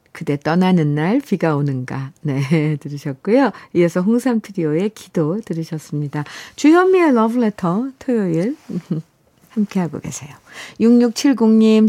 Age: 50-69